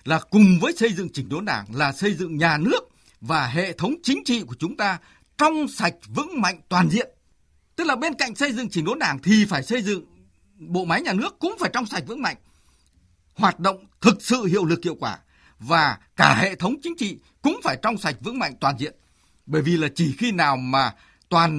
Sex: male